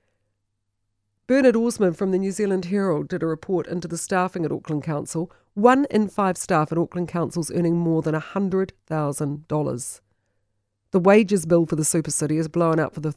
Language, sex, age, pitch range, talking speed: English, female, 50-69, 135-195 Hz, 175 wpm